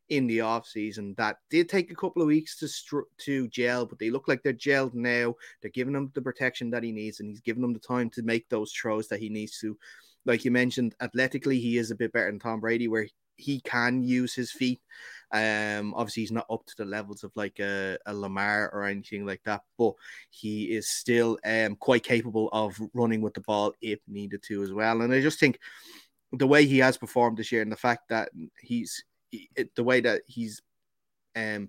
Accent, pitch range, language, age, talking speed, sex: Irish, 105-125 Hz, English, 20-39, 220 wpm, male